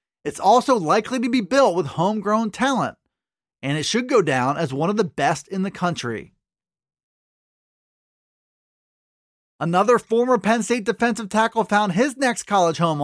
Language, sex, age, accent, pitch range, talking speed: English, male, 30-49, American, 175-225 Hz, 150 wpm